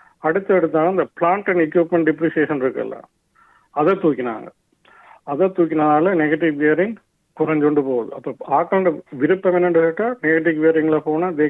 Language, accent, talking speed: Tamil, native, 110 wpm